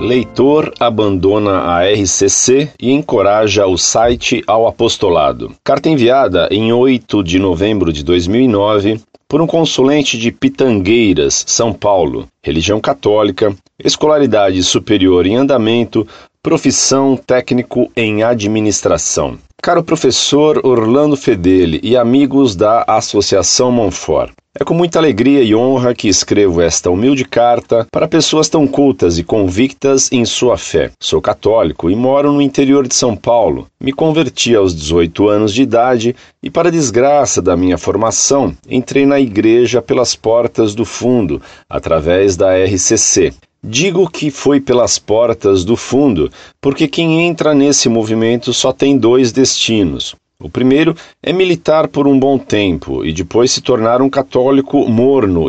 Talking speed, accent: 135 wpm, Brazilian